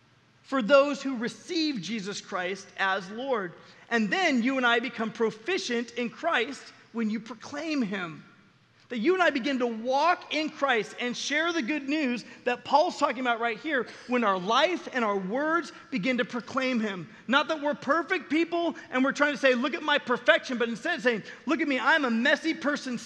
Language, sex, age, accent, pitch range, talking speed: English, male, 30-49, American, 195-265 Hz, 200 wpm